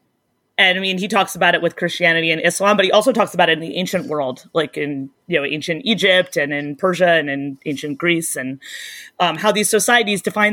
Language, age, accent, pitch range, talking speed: Hebrew, 30-49, American, 175-205 Hz, 230 wpm